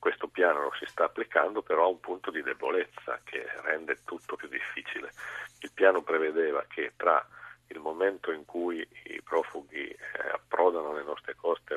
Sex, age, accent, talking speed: male, 50-69, native, 170 wpm